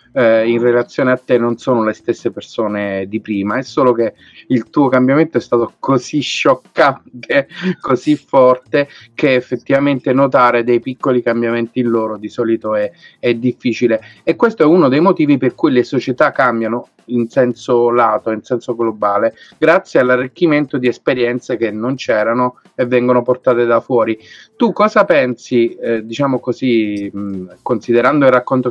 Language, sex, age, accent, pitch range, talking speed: Italian, male, 30-49, native, 110-125 Hz, 155 wpm